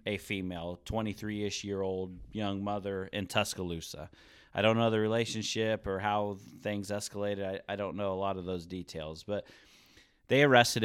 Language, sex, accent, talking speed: English, male, American, 165 wpm